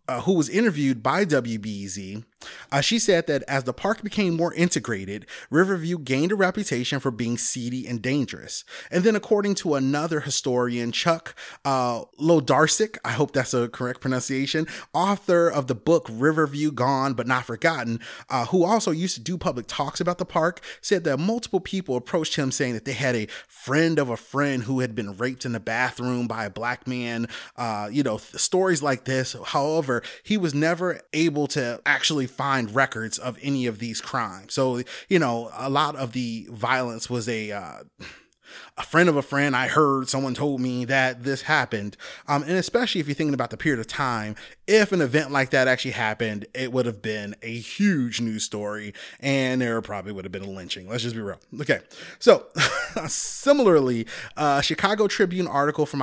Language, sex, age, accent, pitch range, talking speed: English, male, 30-49, American, 120-165 Hz, 185 wpm